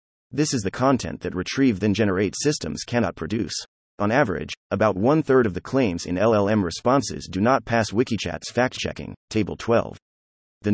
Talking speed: 150 wpm